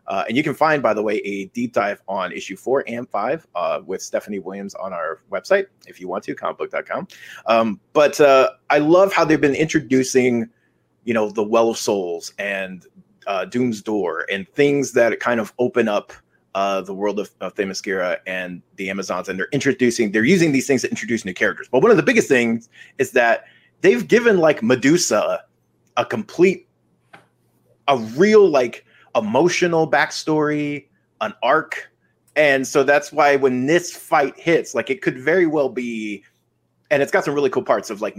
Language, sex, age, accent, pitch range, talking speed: English, male, 30-49, American, 105-150 Hz, 185 wpm